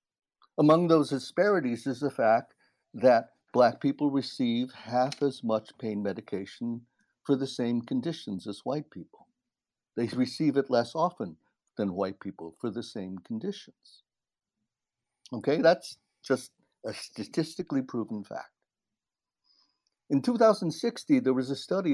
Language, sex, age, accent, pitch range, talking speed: English, male, 60-79, American, 120-185 Hz, 130 wpm